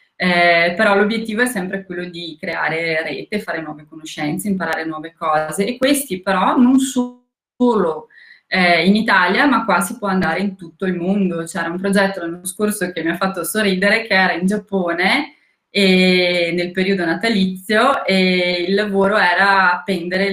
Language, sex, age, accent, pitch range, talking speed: Italian, female, 20-39, native, 170-205 Hz, 165 wpm